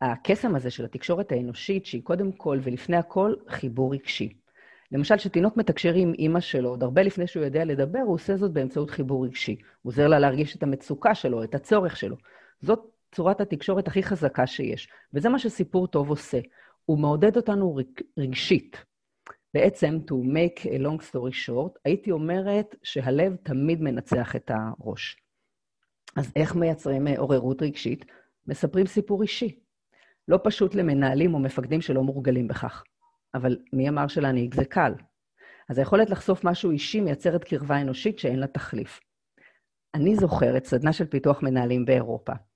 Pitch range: 130-185 Hz